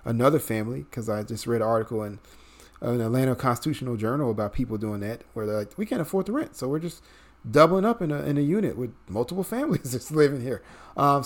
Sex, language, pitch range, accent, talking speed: male, English, 110-145 Hz, American, 230 wpm